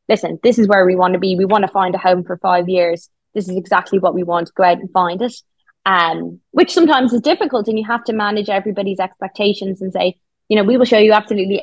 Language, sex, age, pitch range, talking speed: English, female, 20-39, 190-230 Hz, 260 wpm